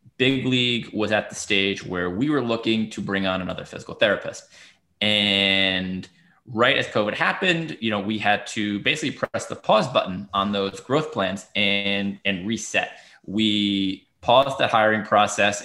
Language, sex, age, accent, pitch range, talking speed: English, male, 20-39, American, 95-115 Hz, 165 wpm